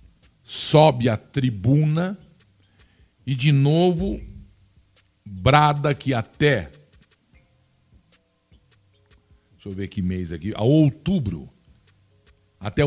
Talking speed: 85 wpm